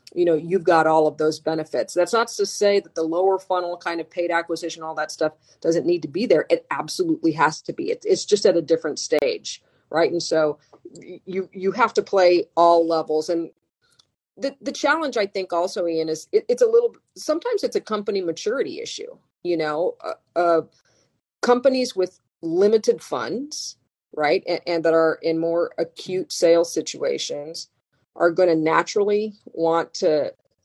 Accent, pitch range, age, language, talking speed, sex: American, 160-235 Hz, 40-59, English, 180 wpm, female